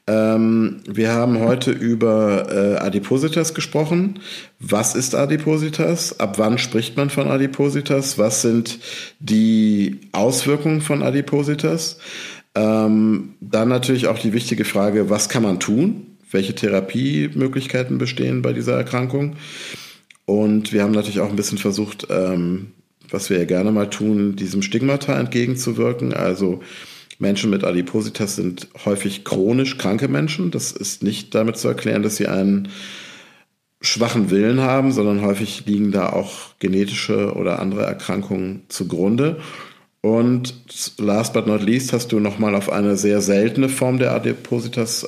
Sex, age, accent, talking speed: male, 50-69, German, 135 wpm